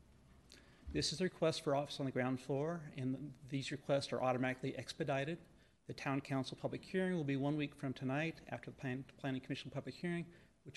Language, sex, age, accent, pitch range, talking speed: English, male, 40-59, American, 130-155 Hz, 190 wpm